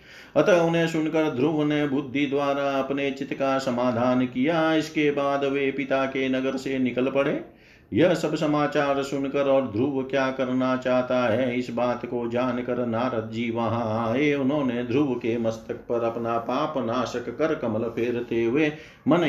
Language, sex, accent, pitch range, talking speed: Hindi, male, native, 125-150 Hz, 155 wpm